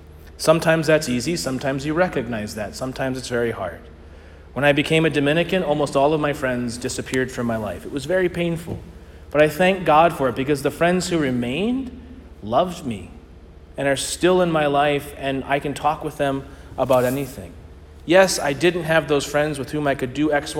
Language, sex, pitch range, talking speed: English, male, 120-165 Hz, 200 wpm